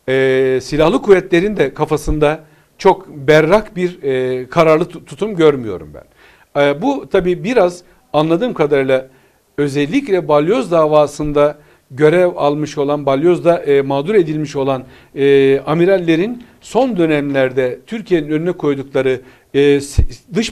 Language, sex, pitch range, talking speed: Turkish, male, 145-180 Hz, 115 wpm